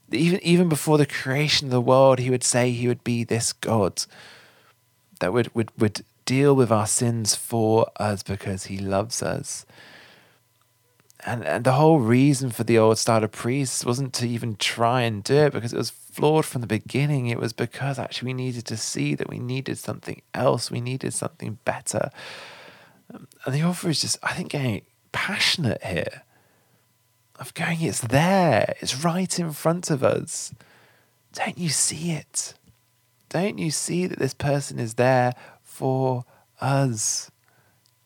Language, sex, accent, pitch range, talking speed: English, male, British, 110-135 Hz, 165 wpm